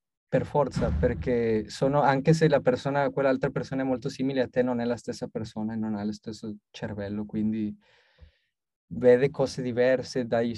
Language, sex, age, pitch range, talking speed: Italian, male, 20-39, 105-130 Hz, 170 wpm